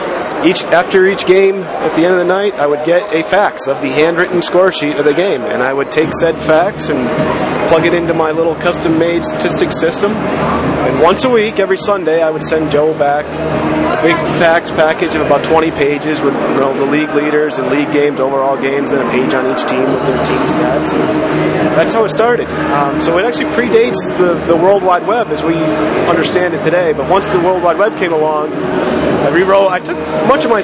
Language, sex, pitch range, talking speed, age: English, male, 150-175 Hz, 220 wpm, 30-49